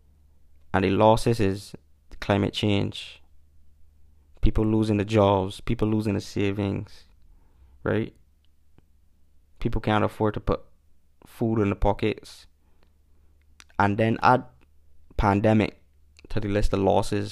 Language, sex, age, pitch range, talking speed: English, male, 20-39, 75-110 Hz, 115 wpm